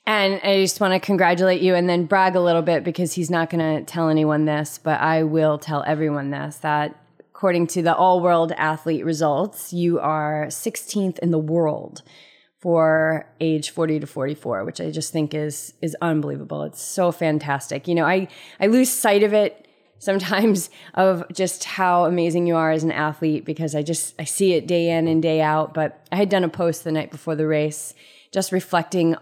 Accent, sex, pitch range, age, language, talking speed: American, female, 155-185 Hz, 20-39, English, 200 wpm